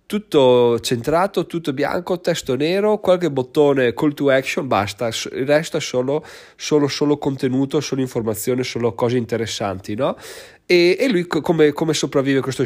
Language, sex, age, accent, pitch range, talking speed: Italian, male, 30-49, native, 115-155 Hz, 150 wpm